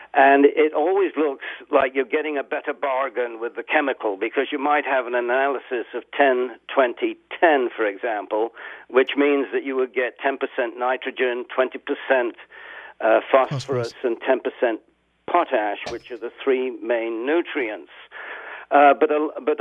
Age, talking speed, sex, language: 60-79, 145 wpm, male, English